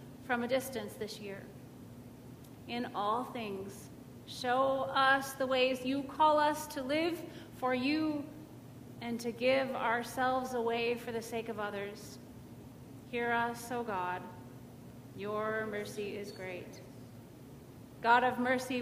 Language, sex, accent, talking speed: English, female, American, 130 wpm